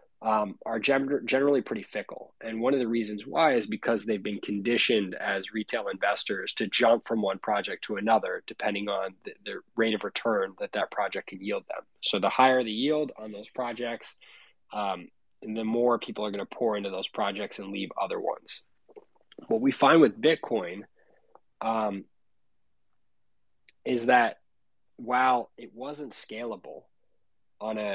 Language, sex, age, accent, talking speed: English, male, 20-39, American, 160 wpm